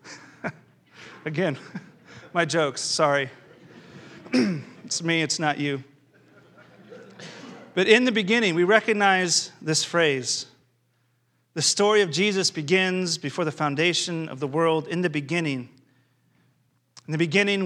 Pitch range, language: 130-175 Hz, English